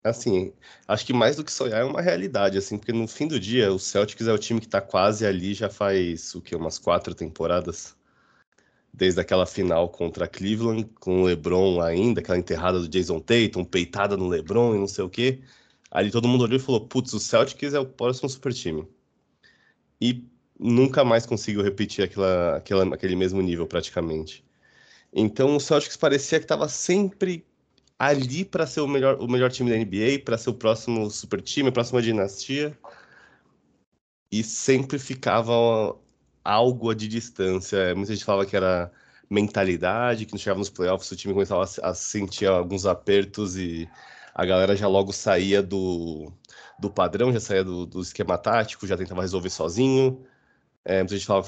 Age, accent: 20-39, Brazilian